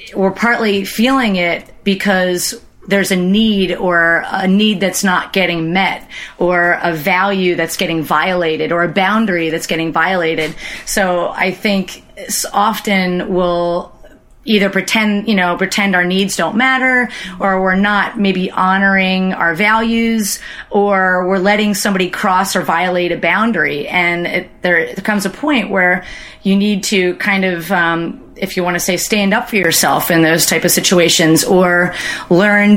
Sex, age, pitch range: female, 30-49, 175-195 Hz